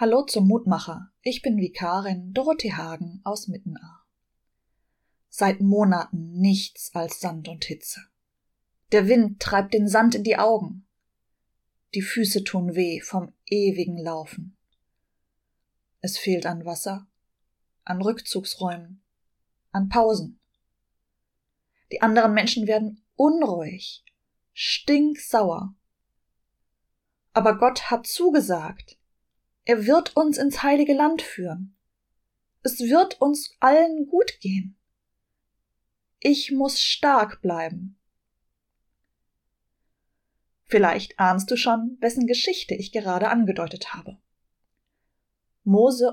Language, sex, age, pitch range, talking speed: German, female, 20-39, 180-235 Hz, 105 wpm